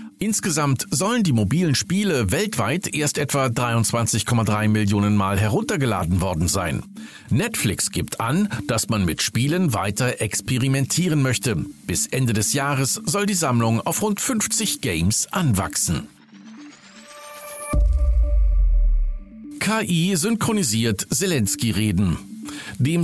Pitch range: 110-170 Hz